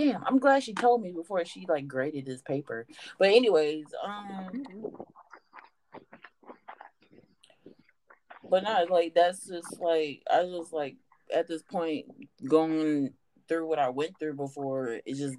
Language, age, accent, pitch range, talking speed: English, 30-49, American, 135-165 Hz, 140 wpm